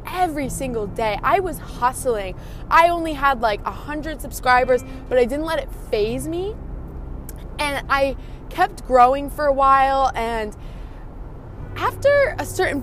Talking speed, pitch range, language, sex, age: 145 wpm, 215-280 Hz, English, female, 20-39